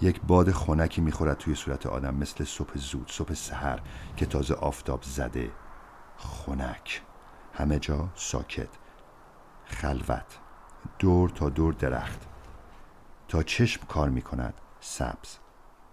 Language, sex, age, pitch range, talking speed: Persian, male, 50-69, 70-80 Hz, 115 wpm